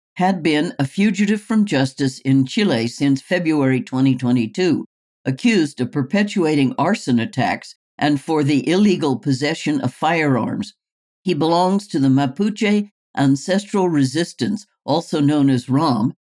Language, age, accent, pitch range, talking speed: English, 60-79, American, 135-185 Hz, 125 wpm